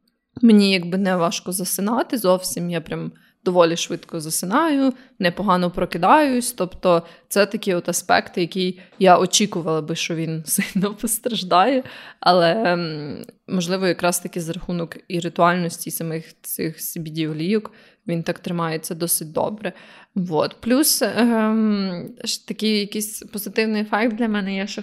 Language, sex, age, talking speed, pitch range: Ukrainian, female, 20-39, 130 wpm, 175-220 Hz